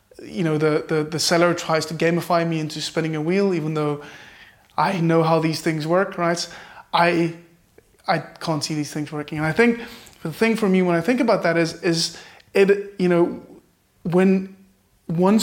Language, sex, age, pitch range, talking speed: English, male, 20-39, 160-185 Hz, 190 wpm